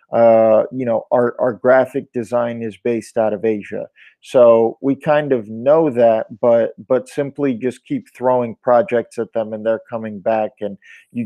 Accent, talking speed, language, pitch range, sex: American, 175 wpm, English, 115-140 Hz, male